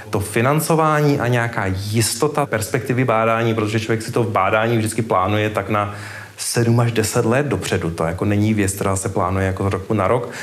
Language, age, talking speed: Czech, 30-49, 195 wpm